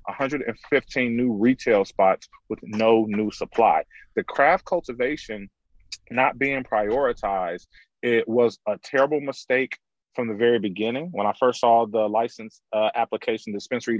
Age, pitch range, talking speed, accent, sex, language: 30-49, 110-125 Hz, 135 wpm, American, male, English